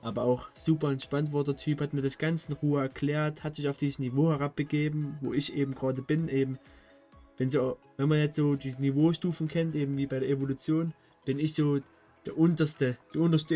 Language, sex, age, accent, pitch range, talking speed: German, male, 20-39, German, 135-155 Hz, 210 wpm